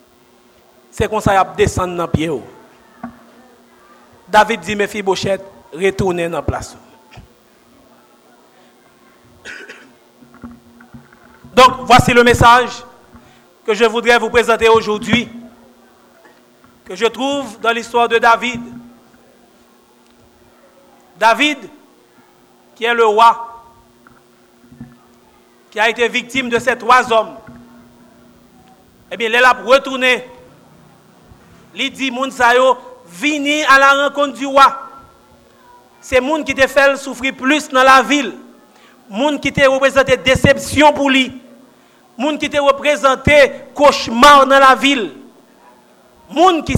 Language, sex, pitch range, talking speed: French, male, 225-275 Hz, 120 wpm